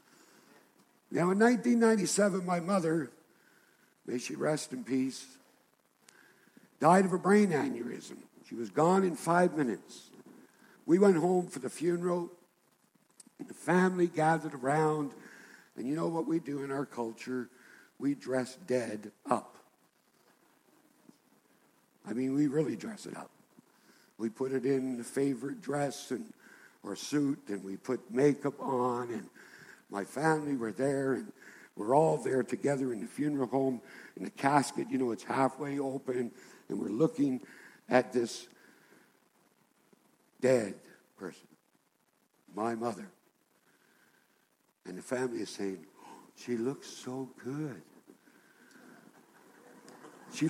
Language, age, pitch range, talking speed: English, 60-79, 130-175 Hz, 130 wpm